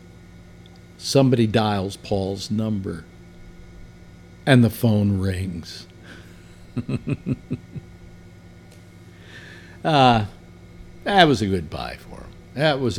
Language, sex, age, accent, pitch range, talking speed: English, male, 50-69, American, 95-130 Hz, 80 wpm